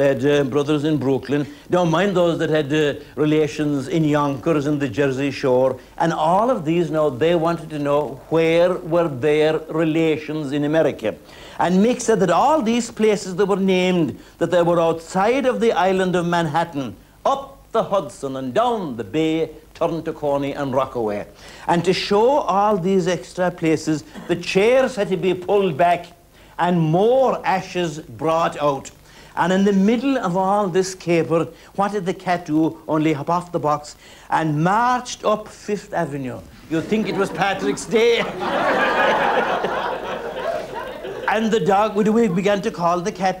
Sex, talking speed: male, 165 wpm